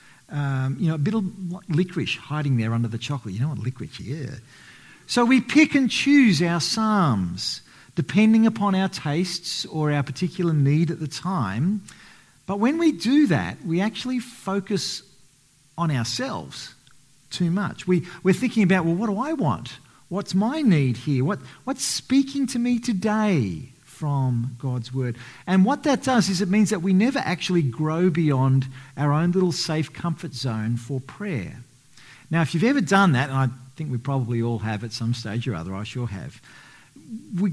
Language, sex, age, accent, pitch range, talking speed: English, male, 50-69, Australian, 135-195 Hz, 180 wpm